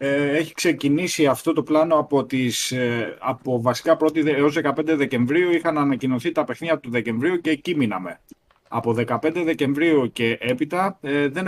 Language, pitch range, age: Greek, 120-155 Hz, 20-39